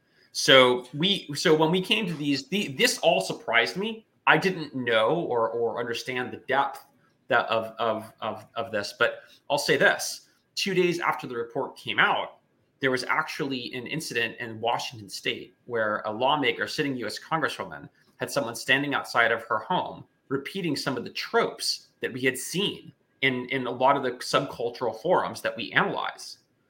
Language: English